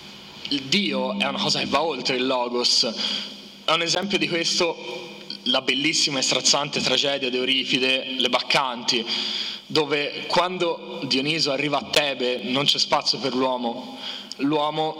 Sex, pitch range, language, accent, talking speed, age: male, 135-165 Hz, Italian, native, 145 wpm, 20-39